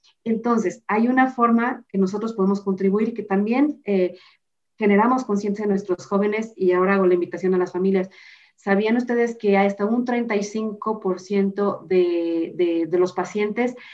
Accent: Mexican